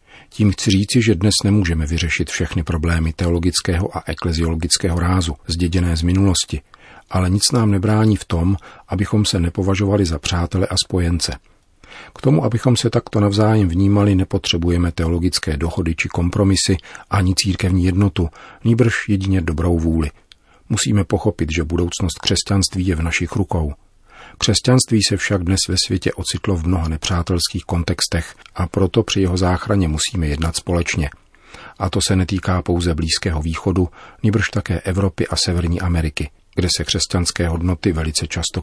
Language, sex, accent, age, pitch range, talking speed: Czech, male, native, 40-59, 85-100 Hz, 150 wpm